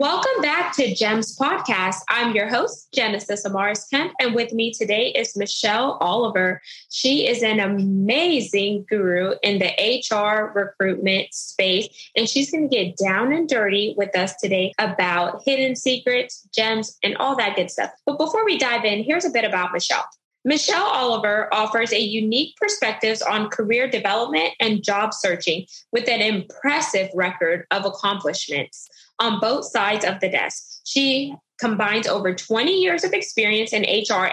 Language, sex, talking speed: English, female, 155 wpm